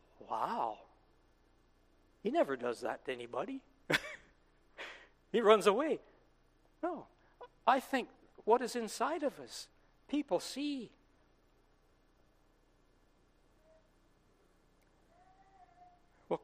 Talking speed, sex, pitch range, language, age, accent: 75 wpm, male, 130-200 Hz, English, 60-79, American